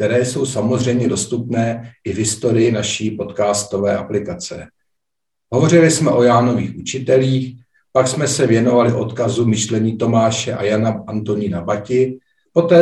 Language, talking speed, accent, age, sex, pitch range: Czech, 125 wpm, native, 50-69, male, 115-130 Hz